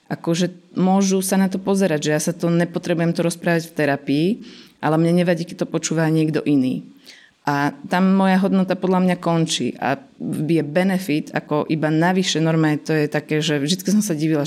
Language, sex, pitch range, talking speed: Slovak, female, 150-185 Hz, 185 wpm